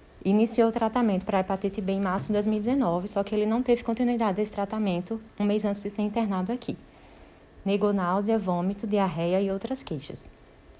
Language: Portuguese